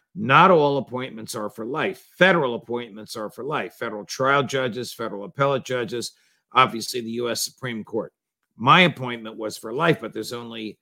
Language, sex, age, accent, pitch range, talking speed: English, male, 50-69, American, 110-130 Hz, 165 wpm